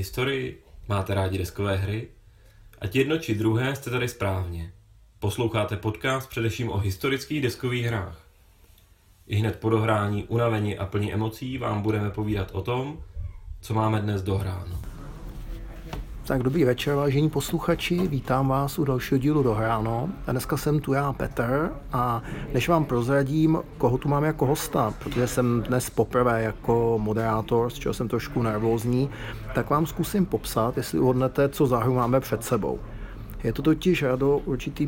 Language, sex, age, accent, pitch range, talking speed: Czech, male, 30-49, native, 110-140 Hz, 155 wpm